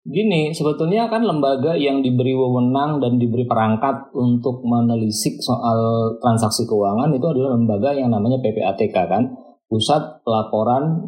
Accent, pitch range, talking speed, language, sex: native, 115-140 Hz, 130 wpm, Indonesian, male